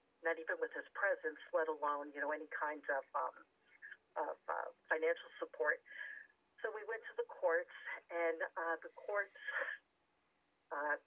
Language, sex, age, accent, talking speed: English, female, 50-69, American, 150 wpm